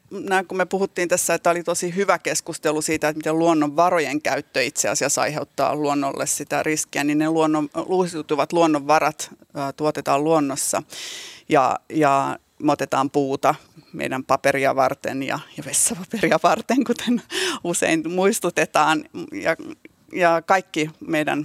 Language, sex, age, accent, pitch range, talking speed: Finnish, female, 30-49, native, 145-170 Hz, 130 wpm